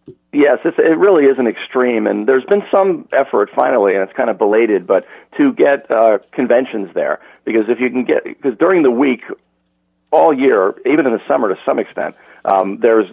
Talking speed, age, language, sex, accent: 195 wpm, 50-69, English, male, American